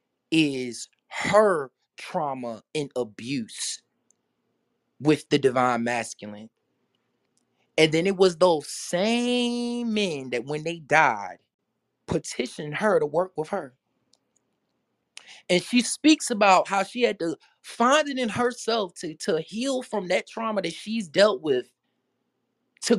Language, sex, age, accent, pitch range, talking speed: English, male, 20-39, American, 145-200 Hz, 130 wpm